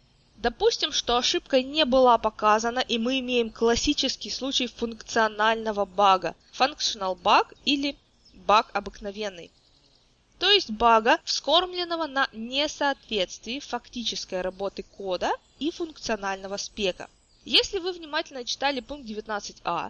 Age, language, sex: 20-39, Russian, female